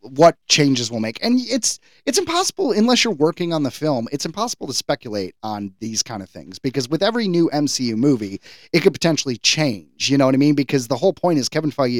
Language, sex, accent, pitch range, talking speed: English, male, American, 125-170 Hz, 225 wpm